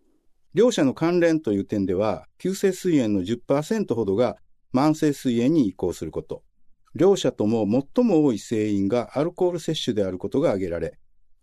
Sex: male